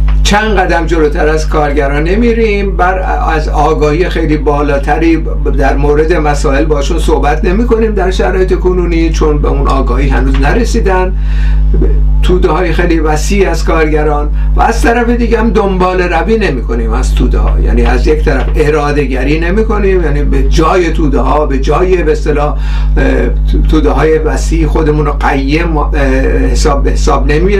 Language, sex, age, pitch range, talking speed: Persian, male, 50-69, 145-190 Hz, 135 wpm